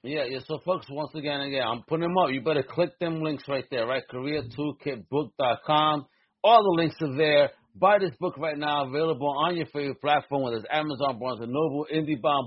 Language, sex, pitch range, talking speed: English, male, 125-155 Hz, 210 wpm